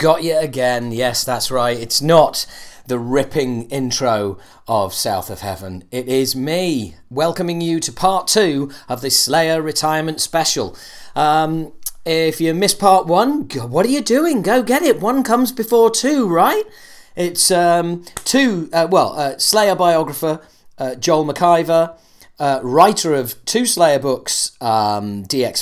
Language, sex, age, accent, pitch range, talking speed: English, male, 40-59, British, 130-180 Hz, 150 wpm